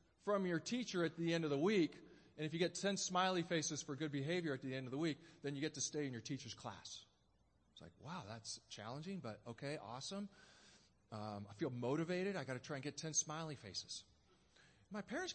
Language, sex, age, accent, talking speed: English, male, 40-59, American, 225 wpm